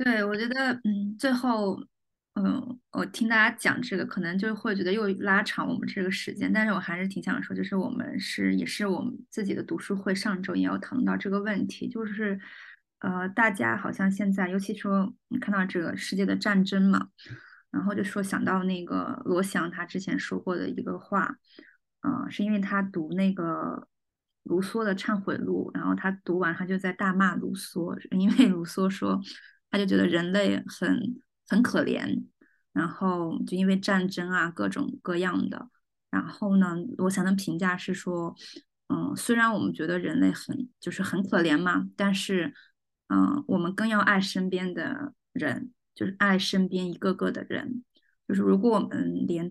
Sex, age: female, 20-39